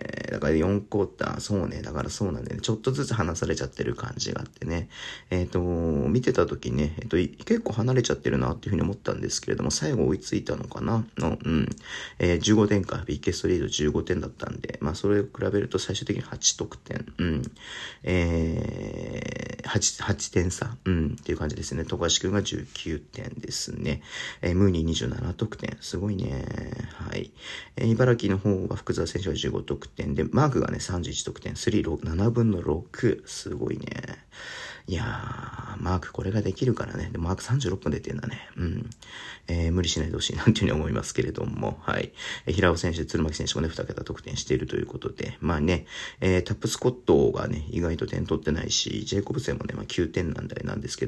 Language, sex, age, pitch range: Japanese, male, 40-59, 80-110 Hz